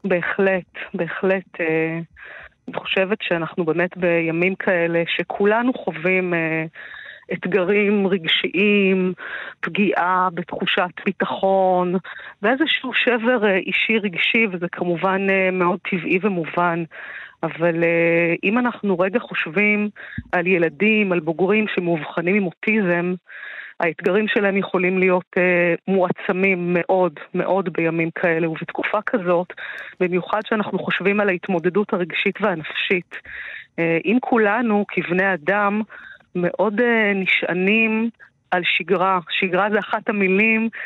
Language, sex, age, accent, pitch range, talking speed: Hebrew, female, 30-49, native, 175-210 Hz, 100 wpm